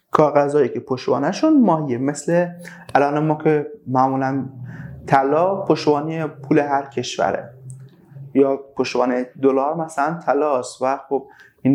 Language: Persian